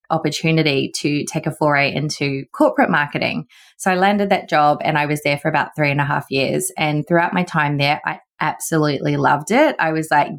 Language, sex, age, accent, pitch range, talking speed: English, female, 20-39, Australian, 145-175 Hz, 210 wpm